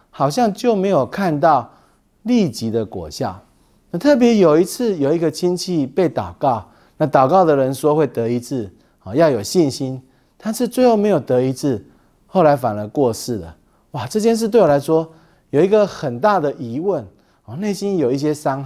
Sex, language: male, Chinese